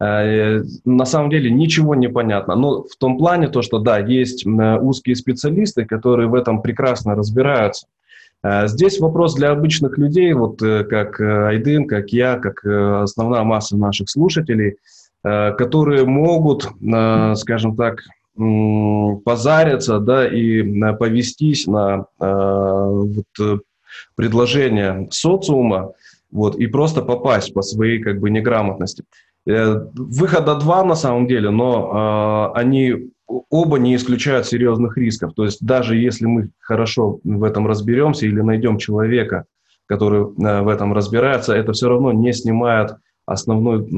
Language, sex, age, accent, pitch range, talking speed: Russian, male, 20-39, native, 105-130 Hz, 125 wpm